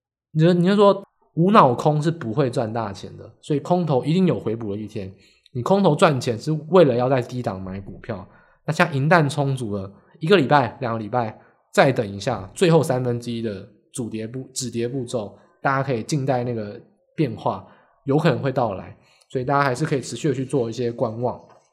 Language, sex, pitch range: Chinese, male, 115-165 Hz